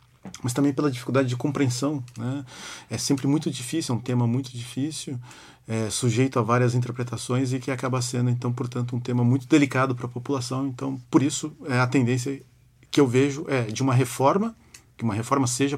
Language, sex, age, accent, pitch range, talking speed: Portuguese, male, 40-59, Brazilian, 120-140 Hz, 195 wpm